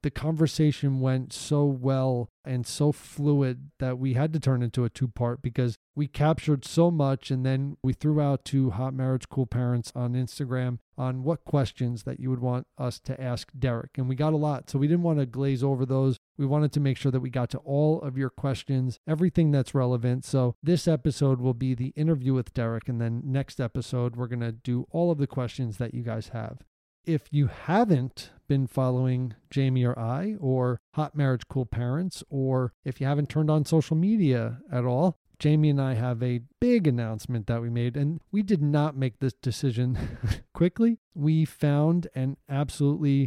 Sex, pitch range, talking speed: male, 125-150 Hz, 200 wpm